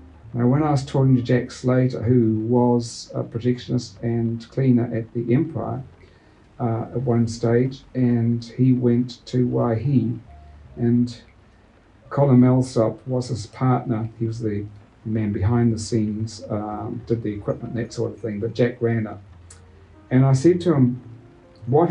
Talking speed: 160 wpm